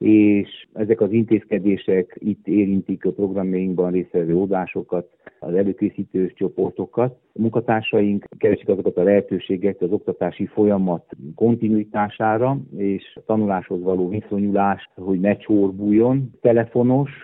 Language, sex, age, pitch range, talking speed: Hungarian, male, 50-69, 90-110 Hz, 110 wpm